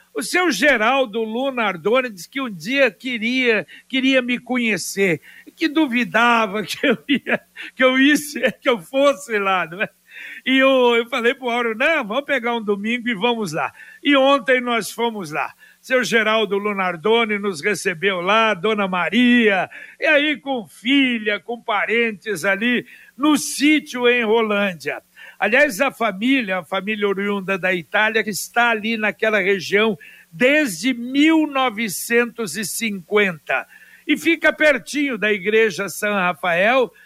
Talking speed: 145 wpm